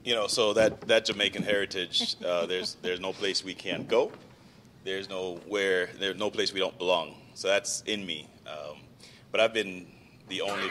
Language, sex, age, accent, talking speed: English, male, 30-49, American, 190 wpm